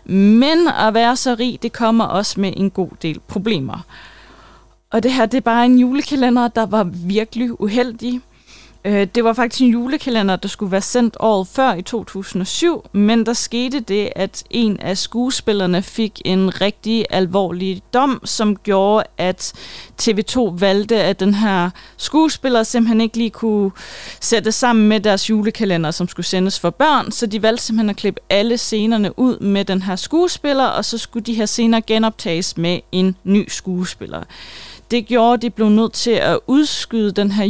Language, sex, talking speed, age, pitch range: Danish, female, 175 wpm, 20-39, 195-240 Hz